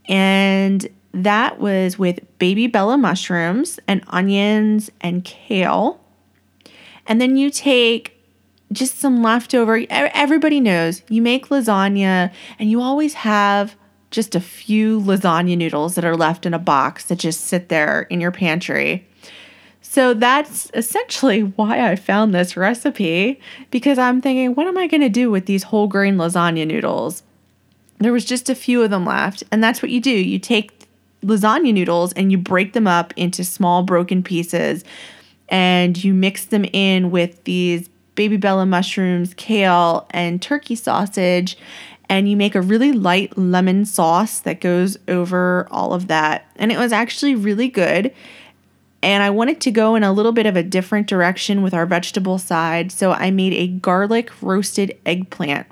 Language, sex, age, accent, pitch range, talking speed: English, female, 30-49, American, 180-225 Hz, 165 wpm